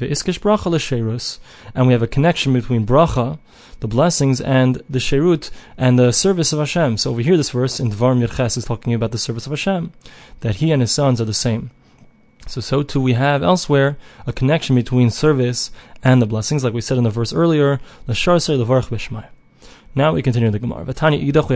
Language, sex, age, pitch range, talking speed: English, male, 20-39, 120-145 Hz, 185 wpm